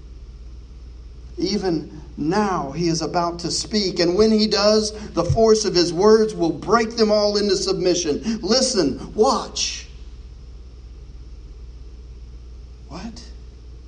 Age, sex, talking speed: 40-59, male, 110 wpm